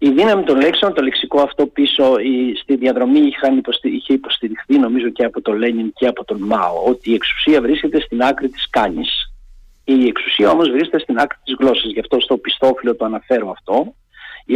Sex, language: male, Greek